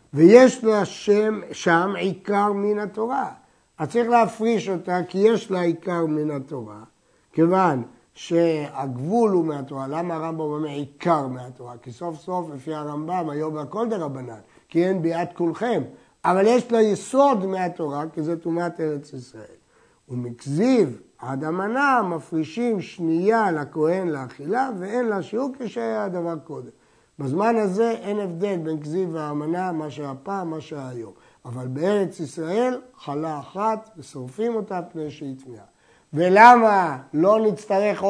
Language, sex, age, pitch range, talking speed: Hebrew, male, 60-79, 150-210 Hz, 135 wpm